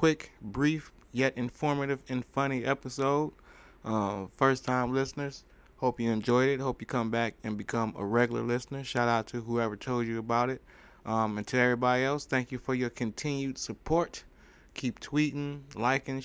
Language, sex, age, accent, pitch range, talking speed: English, male, 20-39, American, 105-130 Hz, 170 wpm